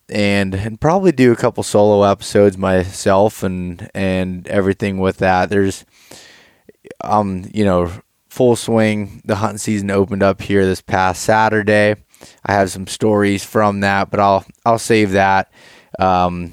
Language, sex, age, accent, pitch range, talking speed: English, male, 20-39, American, 95-120 Hz, 150 wpm